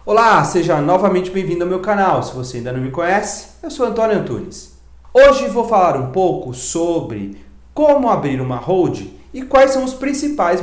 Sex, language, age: male, Portuguese, 40-59